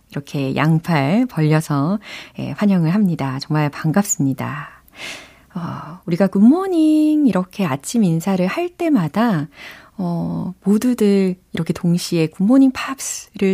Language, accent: Korean, native